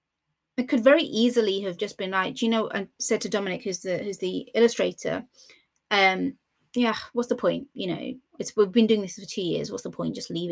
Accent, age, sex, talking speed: British, 30-49, female, 220 wpm